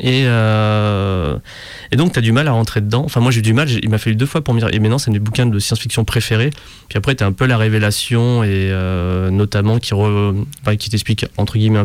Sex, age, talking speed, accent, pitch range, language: male, 20-39, 260 wpm, French, 105-130 Hz, French